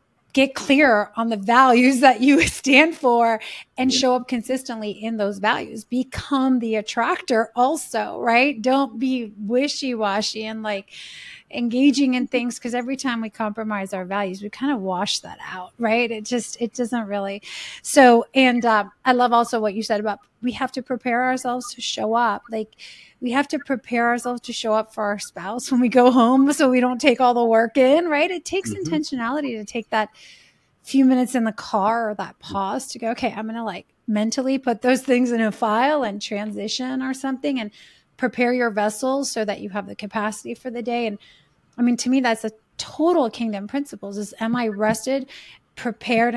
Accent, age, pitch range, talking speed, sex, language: American, 30-49, 220-260 Hz, 195 wpm, female, English